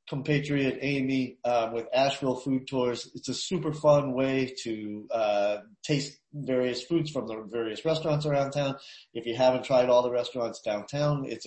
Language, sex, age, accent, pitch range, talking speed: English, male, 30-49, American, 115-150 Hz, 160 wpm